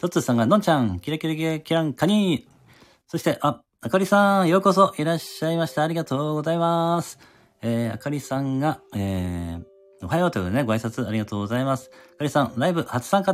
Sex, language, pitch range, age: male, Japanese, 115-170 Hz, 40-59